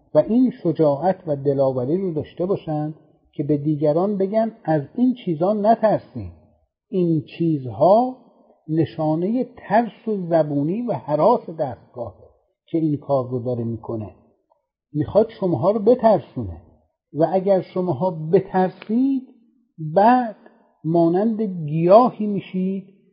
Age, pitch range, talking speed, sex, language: 50-69, 150-200 Hz, 110 wpm, male, Persian